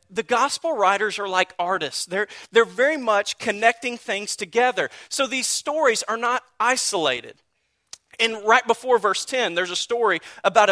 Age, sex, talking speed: 40-59, male, 155 wpm